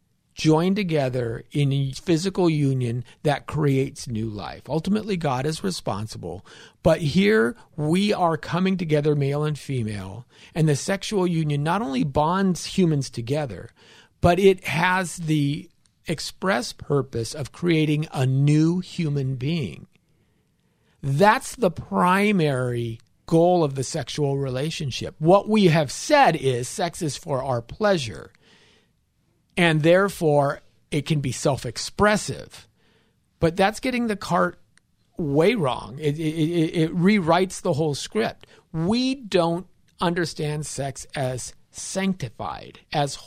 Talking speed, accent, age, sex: 125 wpm, American, 40-59, male